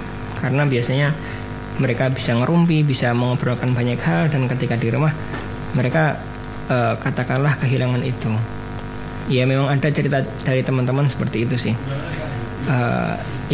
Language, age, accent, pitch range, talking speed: Indonesian, 20-39, native, 120-145 Hz, 125 wpm